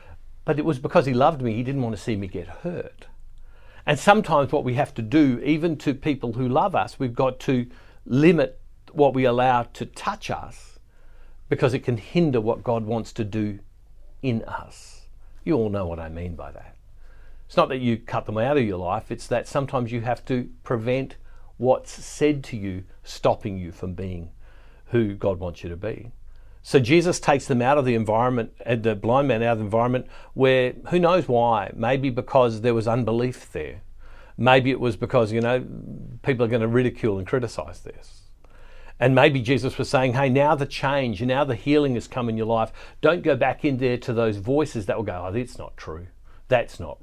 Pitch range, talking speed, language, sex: 100-130 Hz, 205 wpm, English, male